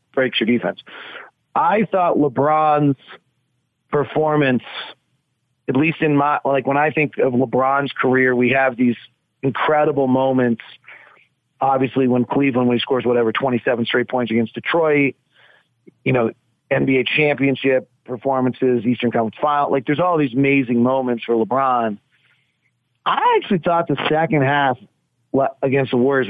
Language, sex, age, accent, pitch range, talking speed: English, male, 40-59, American, 120-145 Hz, 135 wpm